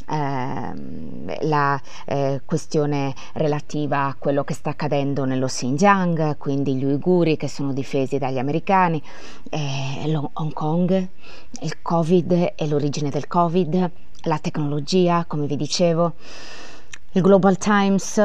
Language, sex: Italian, female